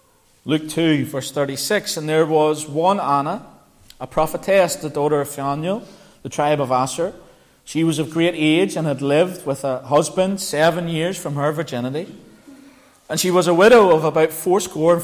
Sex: male